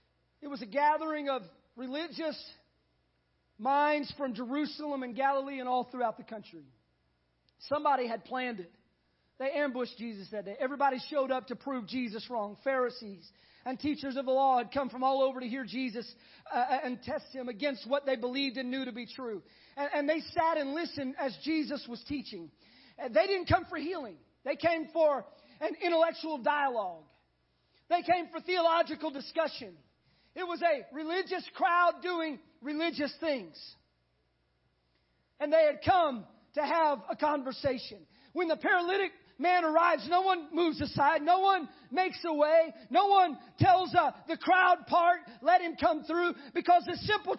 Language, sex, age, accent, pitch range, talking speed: English, male, 40-59, American, 250-340 Hz, 165 wpm